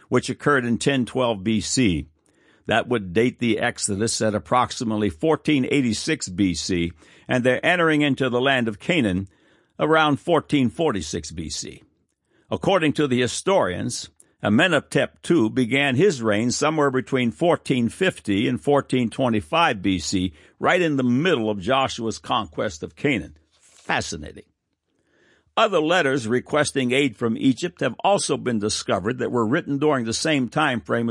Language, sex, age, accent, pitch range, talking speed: English, male, 60-79, American, 115-150 Hz, 130 wpm